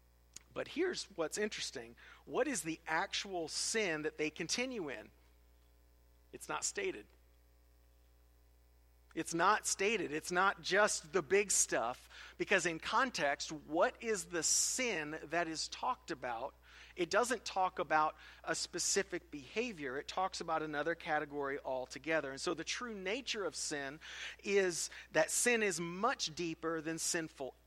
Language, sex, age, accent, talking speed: English, male, 40-59, American, 140 wpm